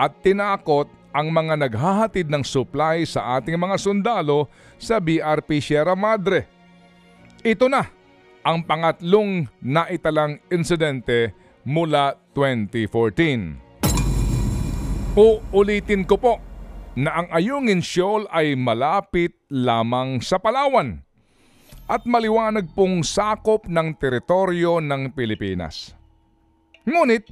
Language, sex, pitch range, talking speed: Filipino, male, 135-210 Hz, 95 wpm